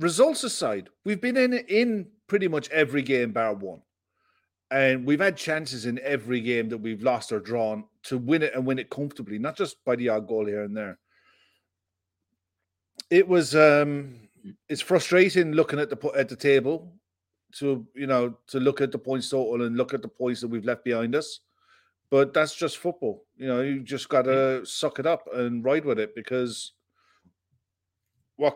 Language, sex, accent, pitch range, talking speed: English, male, British, 115-160 Hz, 185 wpm